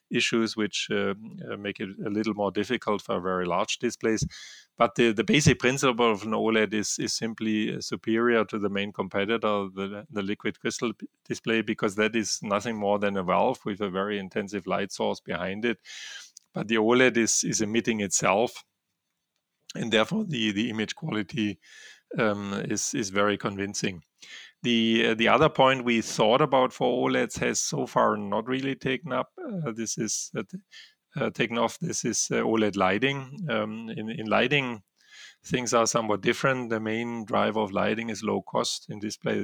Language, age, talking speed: English, 30-49, 175 wpm